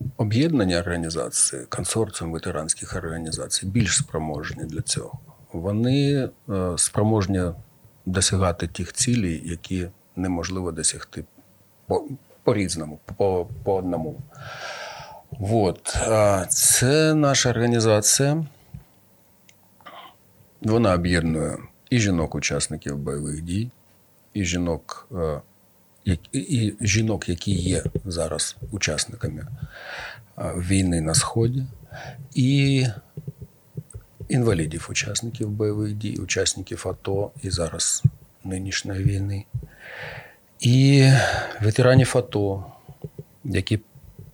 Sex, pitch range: male, 90-120 Hz